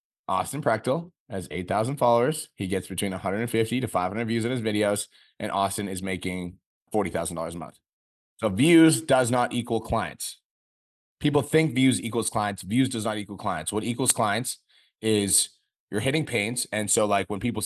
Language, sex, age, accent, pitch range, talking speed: English, male, 20-39, American, 95-120 Hz, 170 wpm